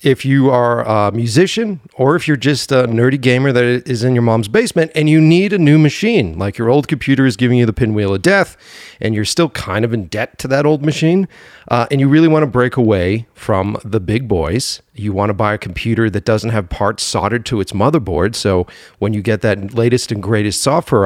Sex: male